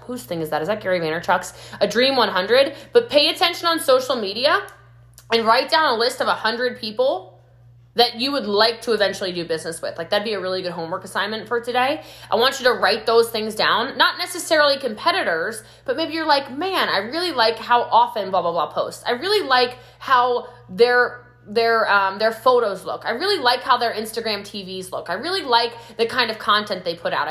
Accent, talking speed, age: American, 215 wpm, 20-39